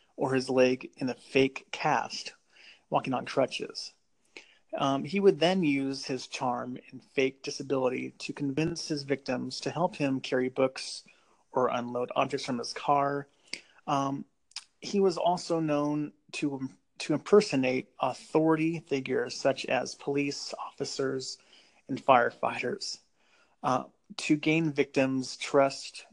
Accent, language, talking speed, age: American, English, 130 wpm, 30-49